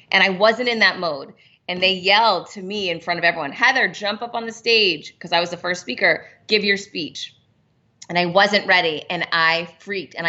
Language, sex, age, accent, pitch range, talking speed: English, female, 30-49, American, 170-200 Hz, 220 wpm